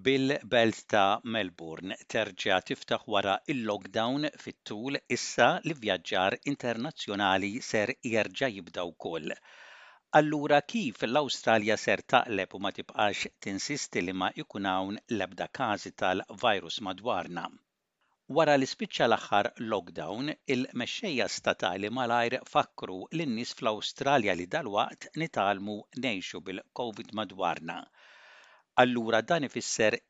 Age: 60-79